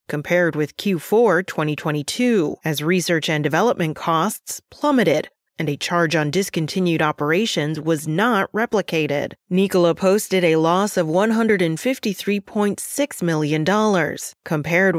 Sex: female